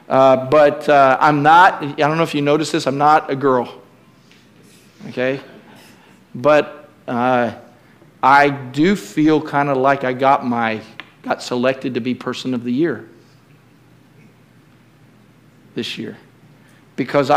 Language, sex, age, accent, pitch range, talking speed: English, male, 50-69, American, 145-215 Hz, 135 wpm